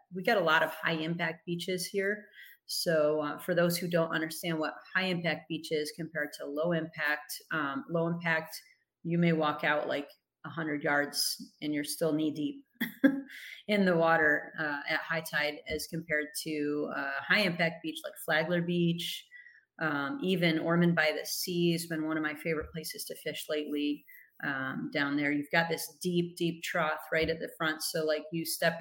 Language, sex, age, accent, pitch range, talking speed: English, female, 30-49, American, 150-180 Hz, 190 wpm